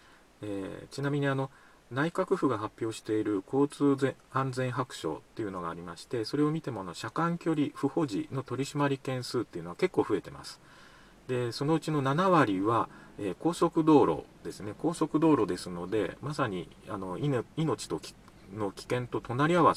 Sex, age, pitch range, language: male, 40-59, 105-145 Hz, Japanese